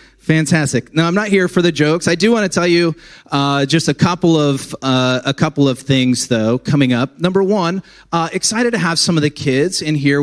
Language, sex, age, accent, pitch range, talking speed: English, male, 30-49, American, 135-175 Hz, 230 wpm